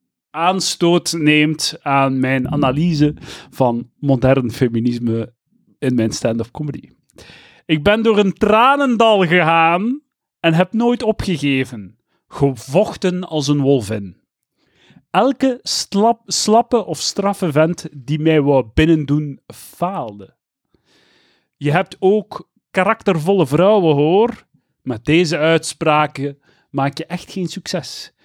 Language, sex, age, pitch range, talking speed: Dutch, male, 40-59, 135-180 Hz, 110 wpm